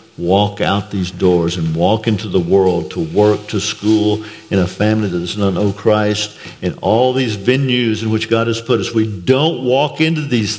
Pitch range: 95-130 Hz